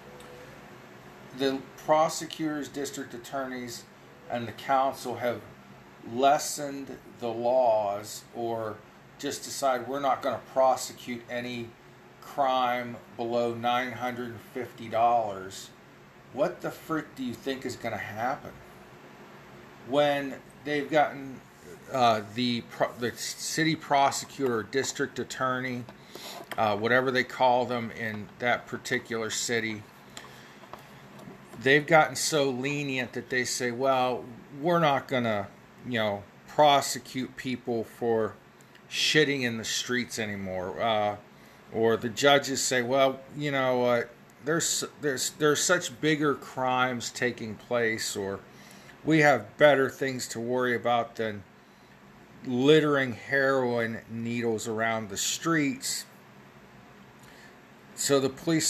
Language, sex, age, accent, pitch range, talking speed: English, male, 40-59, American, 115-140 Hz, 110 wpm